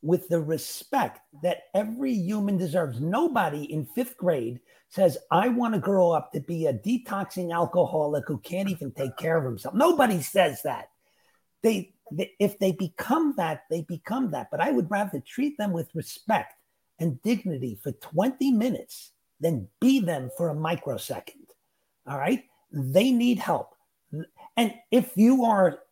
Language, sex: English, male